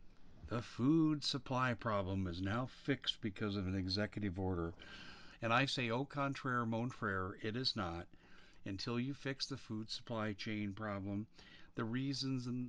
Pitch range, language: 95-120 Hz, English